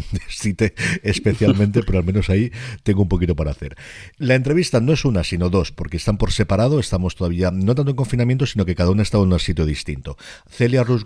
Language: Spanish